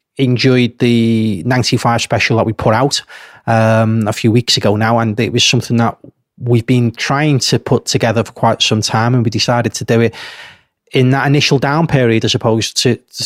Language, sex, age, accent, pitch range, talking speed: English, male, 30-49, British, 115-130 Hz, 205 wpm